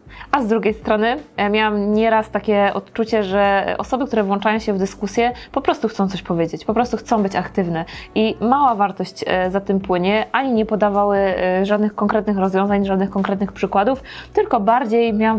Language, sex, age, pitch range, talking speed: Polish, female, 20-39, 195-225 Hz, 170 wpm